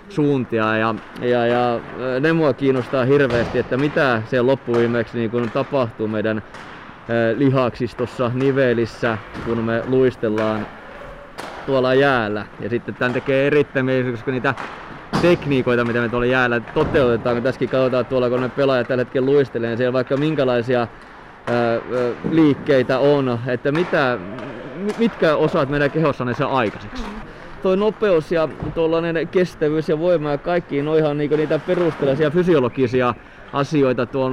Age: 20-39